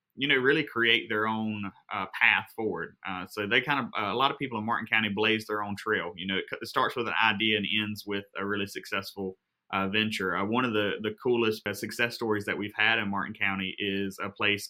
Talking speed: 245 wpm